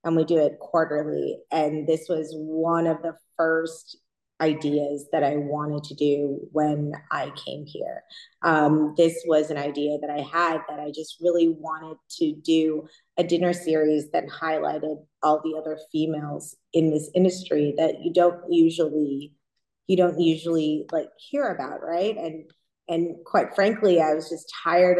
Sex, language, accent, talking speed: female, English, American, 165 wpm